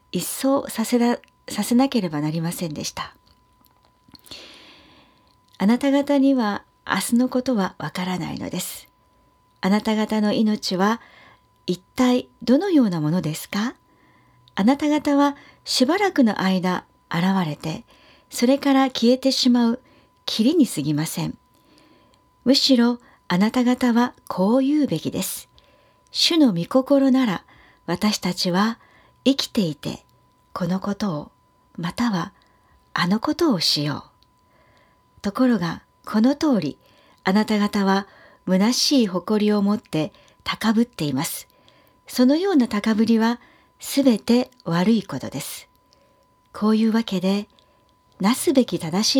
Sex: female